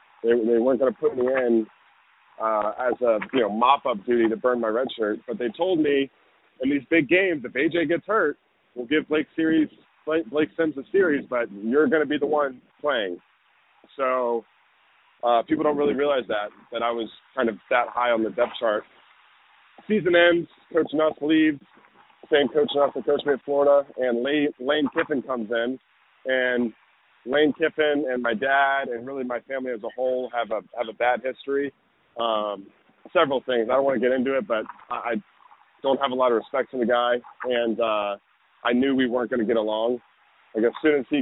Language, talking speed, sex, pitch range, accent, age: English, 205 wpm, male, 120-145 Hz, American, 30-49